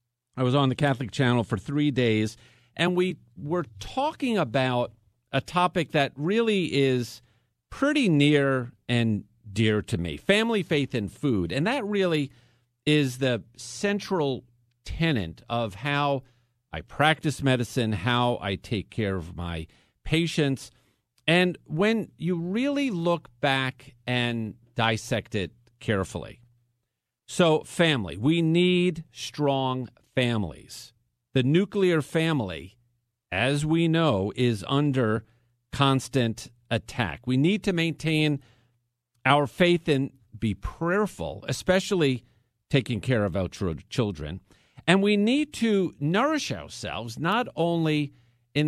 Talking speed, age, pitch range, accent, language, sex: 120 wpm, 50-69, 120-160 Hz, American, English, male